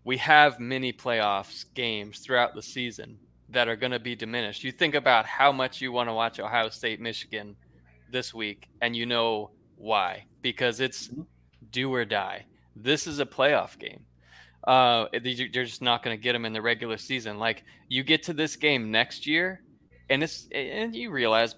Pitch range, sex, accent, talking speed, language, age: 110-140 Hz, male, American, 185 wpm, English, 20-39